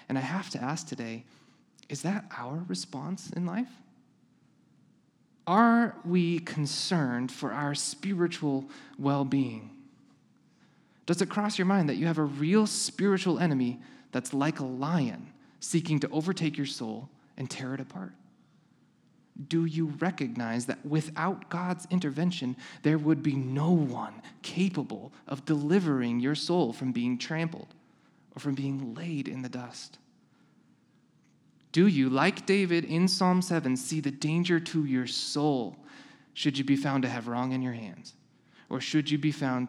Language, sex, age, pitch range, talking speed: English, male, 20-39, 130-175 Hz, 150 wpm